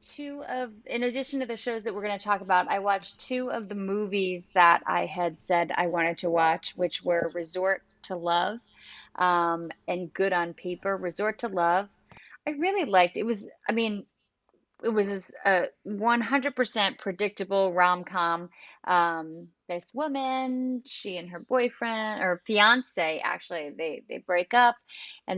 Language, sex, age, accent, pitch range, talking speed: English, female, 30-49, American, 175-220 Hz, 160 wpm